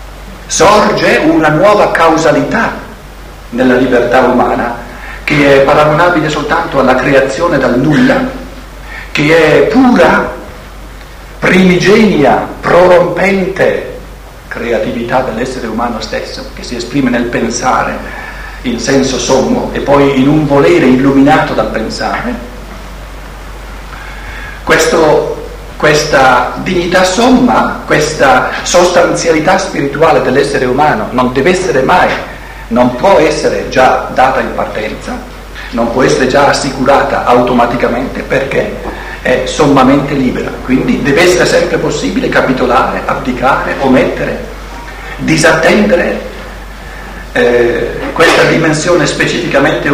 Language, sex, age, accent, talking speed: Italian, male, 50-69, native, 100 wpm